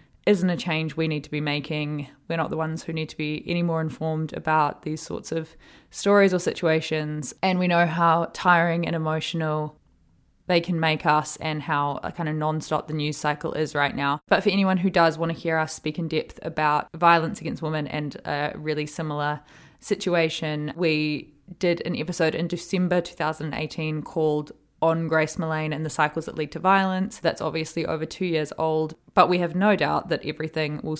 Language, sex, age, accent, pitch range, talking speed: English, female, 20-39, Australian, 155-185 Hz, 195 wpm